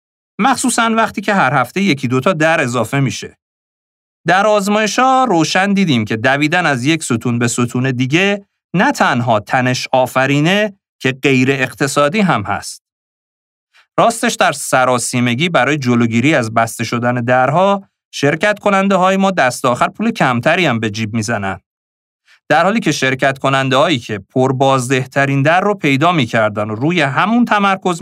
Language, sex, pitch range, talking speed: Persian, male, 120-175 Hz, 145 wpm